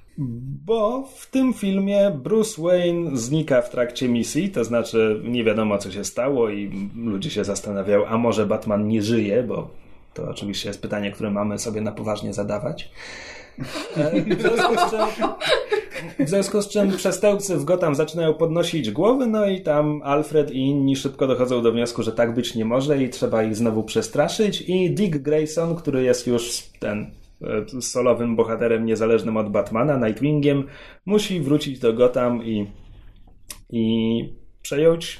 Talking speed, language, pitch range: 155 wpm, Polish, 110-165 Hz